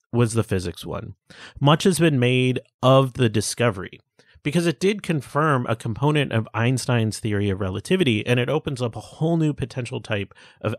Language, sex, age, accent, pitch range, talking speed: English, male, 30-49, American, 110-145 Hz, 180 wpm